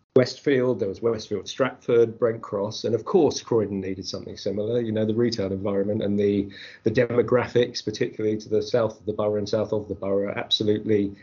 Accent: British